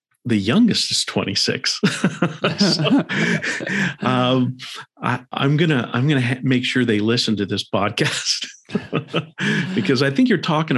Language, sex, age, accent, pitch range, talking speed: English, male, 50-69, American, 105-145 Hz, 130 wpm